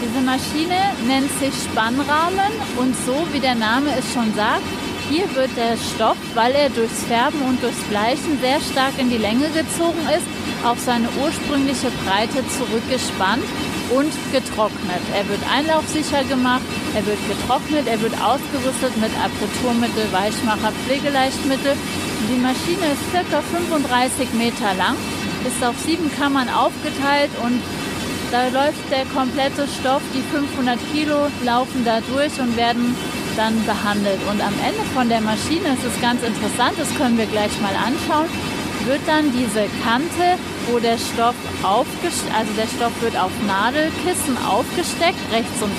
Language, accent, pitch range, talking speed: German, German, 230-285 Hz, 150 wpm